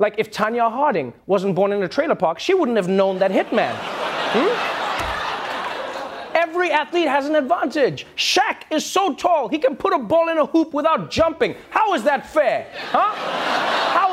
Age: 30-49